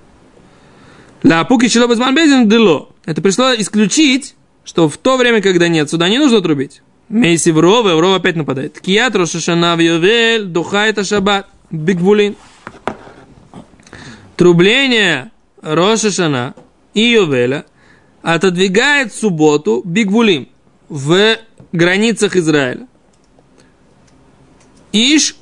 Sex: male